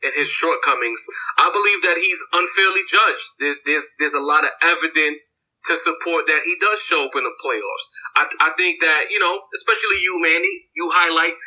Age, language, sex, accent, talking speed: 30-49, English, male, American, 190 wpm